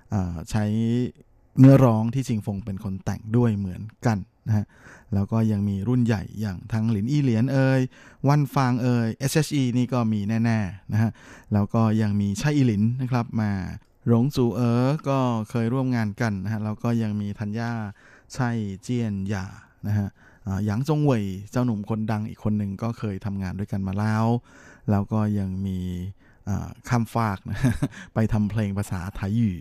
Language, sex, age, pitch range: Thai, male, 20-39, 100-120 Hz